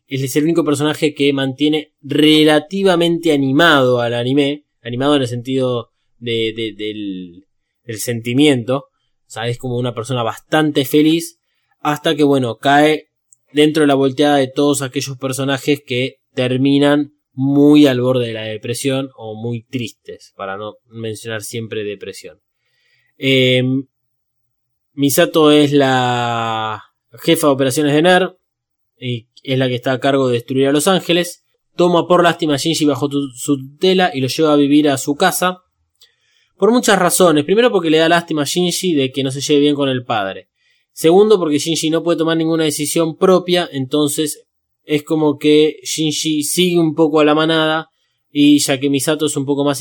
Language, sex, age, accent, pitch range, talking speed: Spanish, male, 20-39, Argentinian, 130-160 Hz, 165 wpm